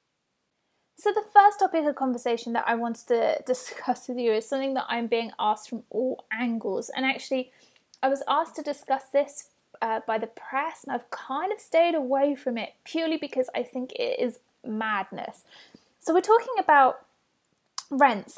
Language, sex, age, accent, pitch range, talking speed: English, female, 20-39, British, 235-285 Hz, 175 wpm